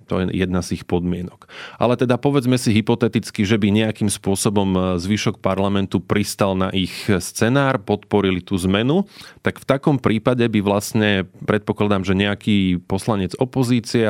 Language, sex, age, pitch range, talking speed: Slovak, male, 30-49, 95-115 Hz, 150 wpm